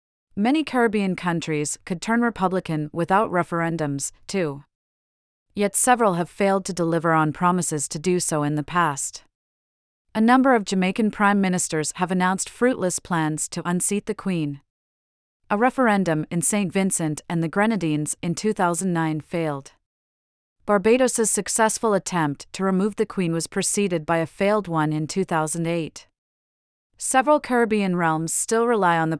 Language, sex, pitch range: English, female, 160-205 Hz